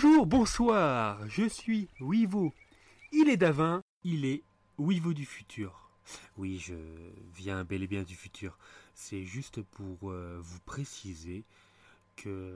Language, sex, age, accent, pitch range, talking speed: French, male, 30-49, French, 95-145 Hz, 130 wpm